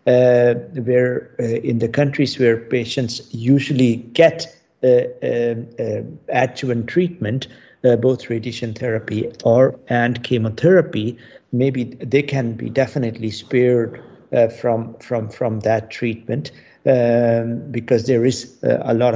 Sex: male